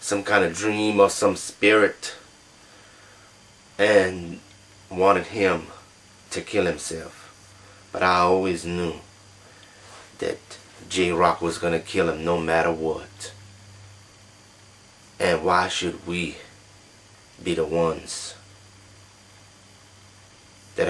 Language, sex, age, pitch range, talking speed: English, male, 30-49, 95-105 Hz, 100 wpm